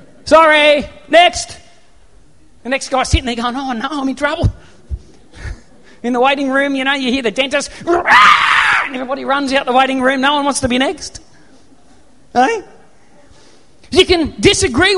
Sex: male